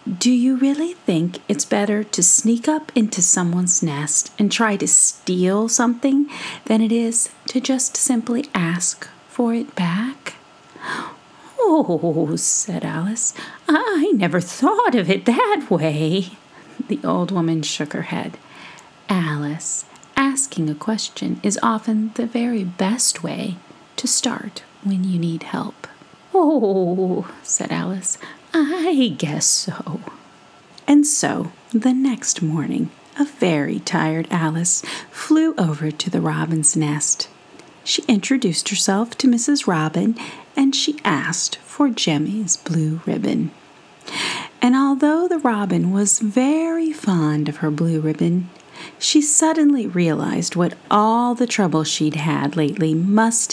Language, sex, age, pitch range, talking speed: English, female, 40-59, 165-255 Hz, 130 wpm